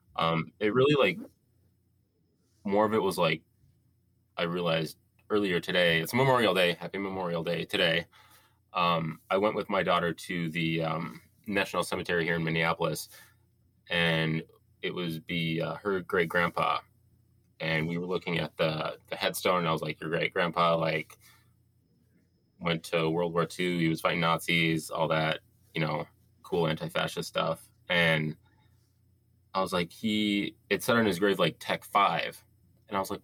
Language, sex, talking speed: English, male, 165 wpm